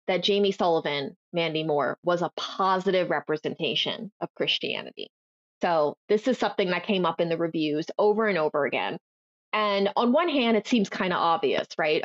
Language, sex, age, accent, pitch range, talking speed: English, female, 20-39, American, 175-230 Hz, 175 wpm